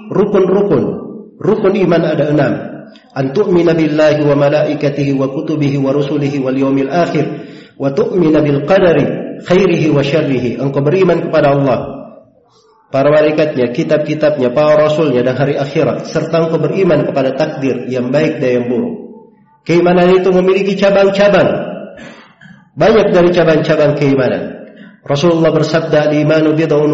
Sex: male